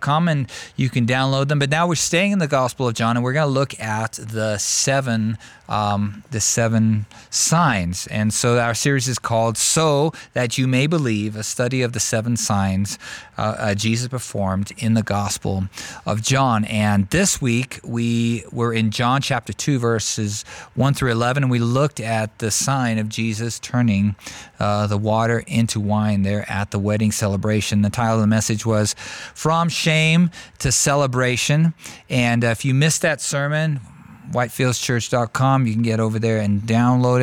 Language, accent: English, American